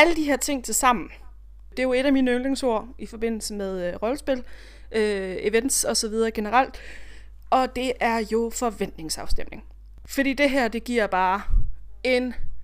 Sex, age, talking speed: female, 20-39, 170 wpm